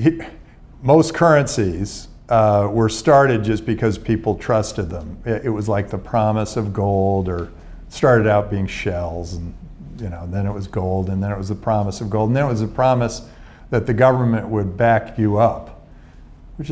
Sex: male